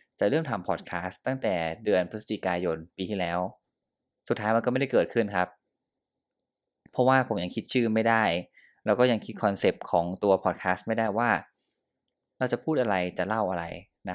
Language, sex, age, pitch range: Thai, male, 20-39, 95-115 Hz